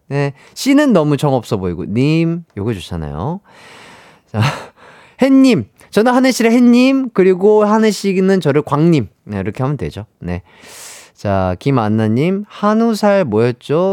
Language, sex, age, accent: Korean, male, 30-49, native